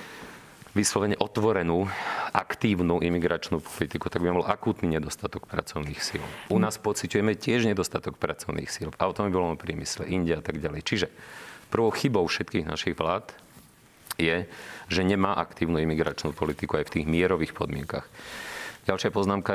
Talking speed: 150 wpm